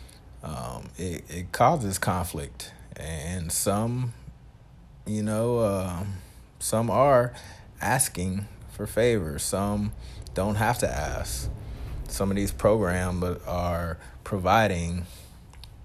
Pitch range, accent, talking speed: 85-105 Hz, American, 100 wpm